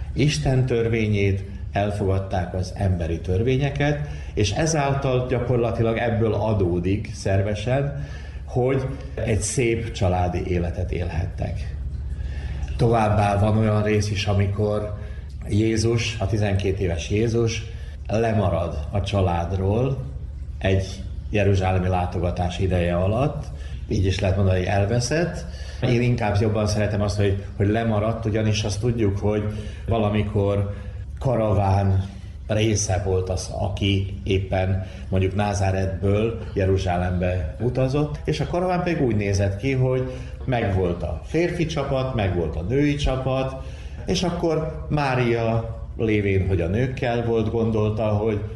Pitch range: 90-115 Hz